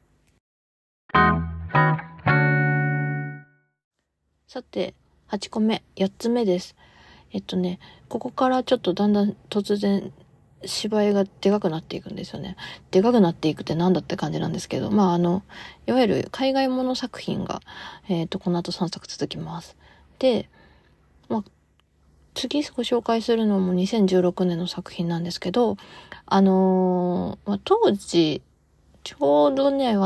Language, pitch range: Japanese, 170-225 Hz